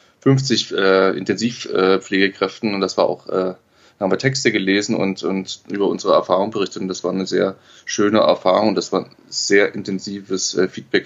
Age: 20-39